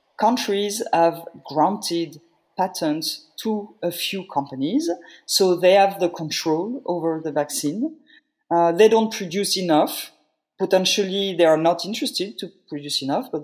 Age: 40-59